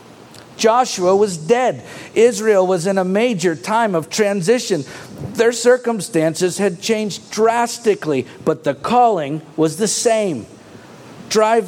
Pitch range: 175-215 Hz